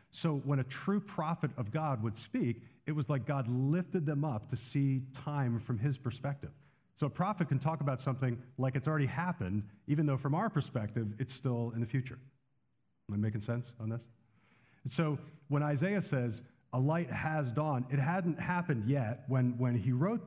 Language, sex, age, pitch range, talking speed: English, male, 40-59, 120-150 Hz, 190 wpm